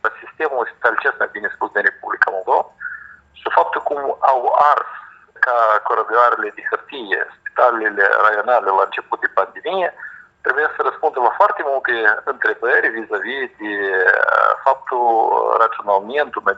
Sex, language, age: male, Romanian, 50-69